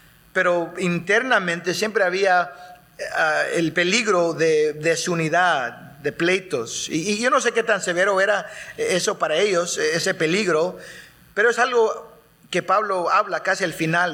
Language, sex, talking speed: English, male, 145 wpm